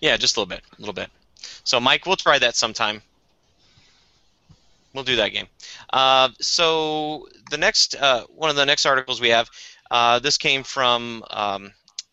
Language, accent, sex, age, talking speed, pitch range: English, American, male, 30-49, 175 wpm, 110-130 Hz